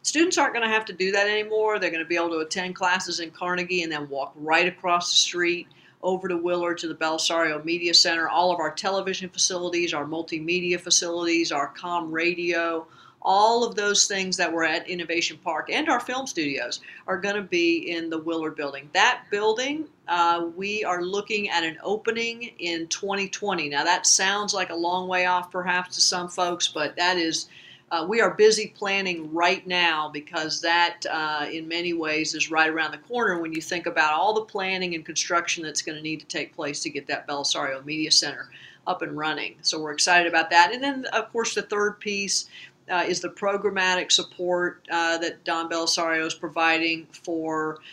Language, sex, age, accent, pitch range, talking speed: English, female, 50-69, American, 165-195 Hz, 200 wpm